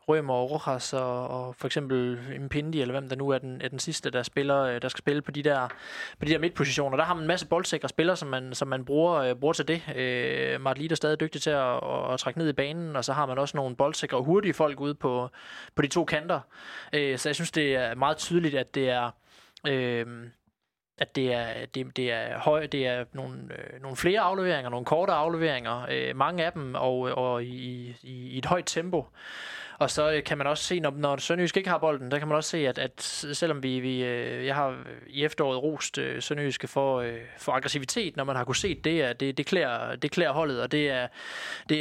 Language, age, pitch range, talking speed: Danish, 20-39, 130-155 Hz, 230 wpm